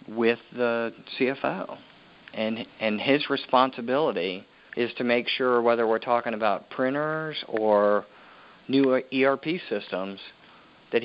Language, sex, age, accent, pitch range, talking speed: English, male, 40-59, American, 105-120 Hz, 115 wpm